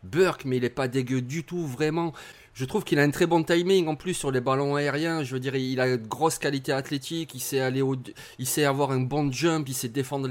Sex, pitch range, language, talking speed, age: male, 135-170 Hz, French, 260 wpm, 30-49